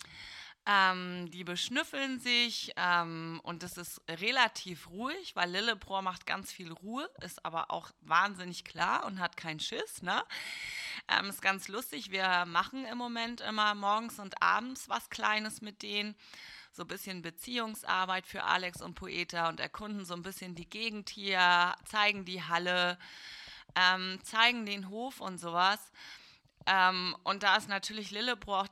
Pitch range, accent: 180-220 Hz, German